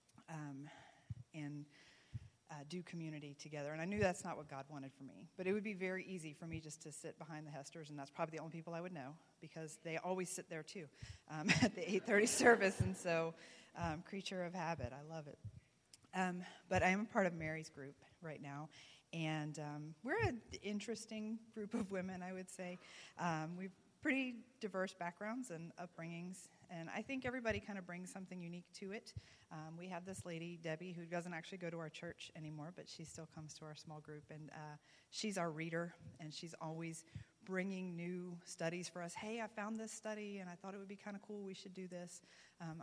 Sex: female